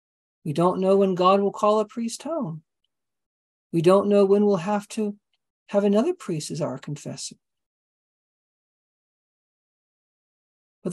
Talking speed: 130 wpm